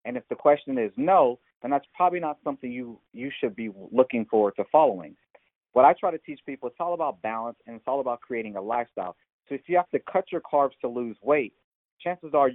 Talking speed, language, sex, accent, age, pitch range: 235 wpm, English, male, American, 40-59, 115-150 Hz